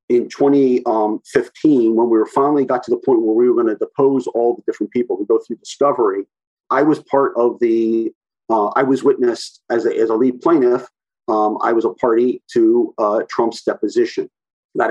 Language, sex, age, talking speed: English, male, 50-69, 195 wpm